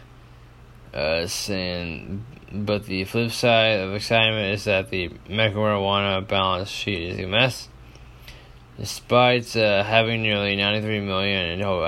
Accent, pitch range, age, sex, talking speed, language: American, 95-115 Hz, 20-39, male, 125 wpm, English